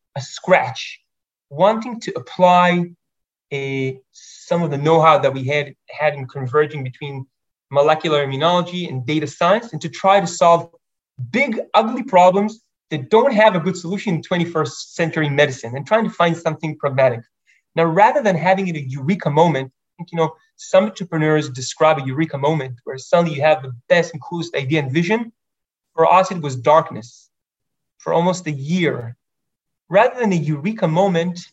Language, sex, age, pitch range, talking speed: English, male, 30-49, 145-180 Hz, 170 wpm